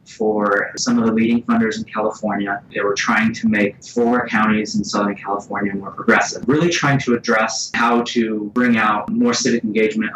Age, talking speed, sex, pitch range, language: 20-39, 185 wpm, male, 105-125 Hz, English